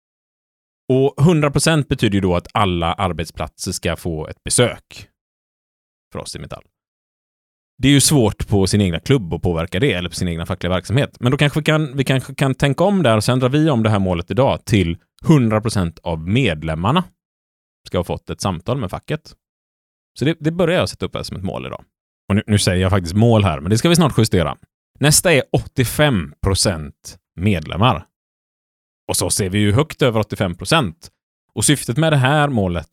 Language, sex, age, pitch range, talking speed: Swedish, male, 30-49, 85-130 Hz, 195 wpm